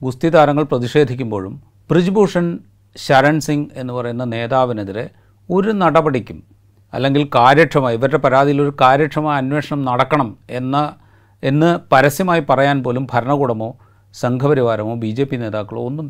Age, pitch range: 40-59, 105-140 Hz